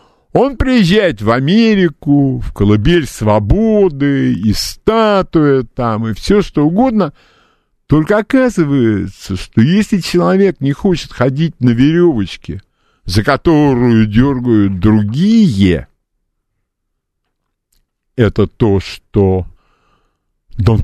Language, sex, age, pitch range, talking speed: Russian, male, 50-69, 100-160 Hz, 90 wpm